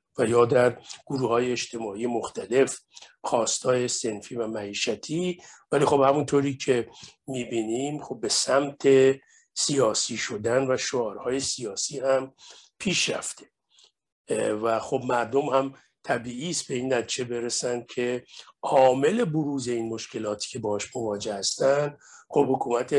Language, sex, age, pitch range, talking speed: Persian, male, 50-69, 120-140 Hz, 125 wpm